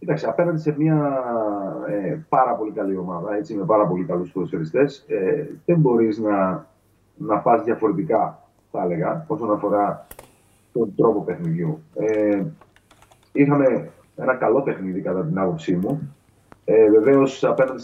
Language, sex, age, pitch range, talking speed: Greek, male, 30-49, 110-155 Hz, 125 wpm